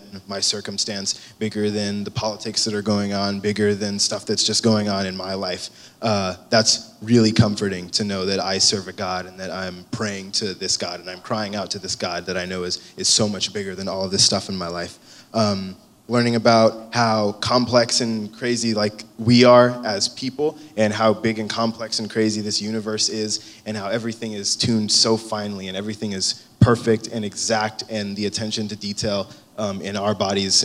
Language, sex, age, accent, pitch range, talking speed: English, male, 20-39, American, 100-115 Hz, 205 wpm